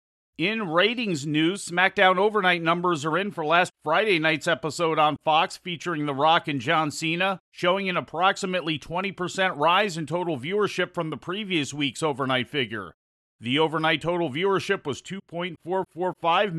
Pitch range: 150-180 Hz